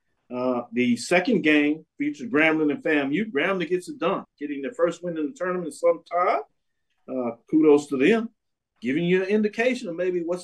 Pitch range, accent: 135-185 Hz, American